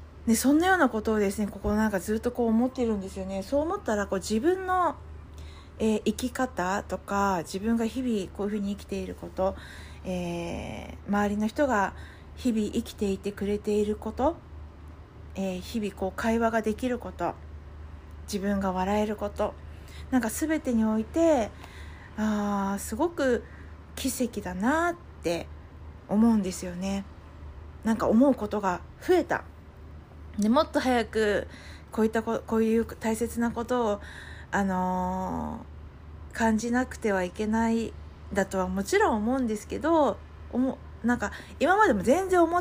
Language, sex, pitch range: Japanese, female, 185-255 Hz